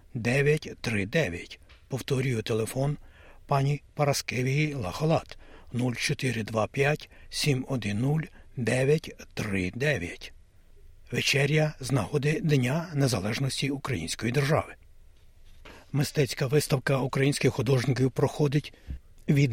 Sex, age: male, 60-79